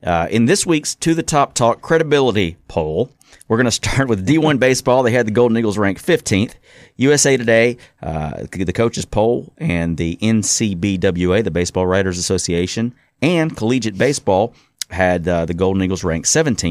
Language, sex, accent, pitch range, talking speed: English, male, American, 90-130 Hz, 165 wpm